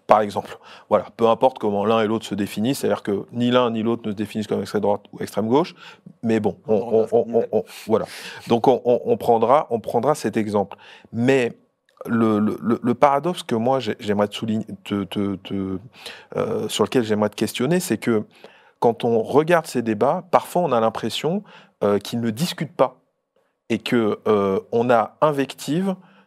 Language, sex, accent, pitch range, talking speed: French, male, French, 105-130 Hz, 160 wpm